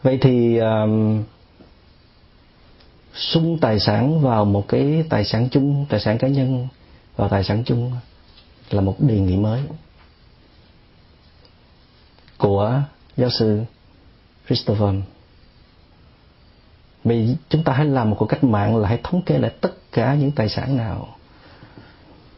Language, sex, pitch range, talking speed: Vietnamese, male, 100-130 Hz, 130 wpm